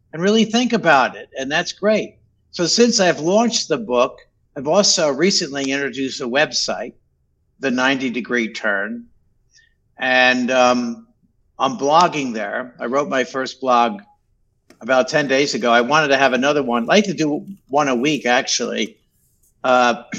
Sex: male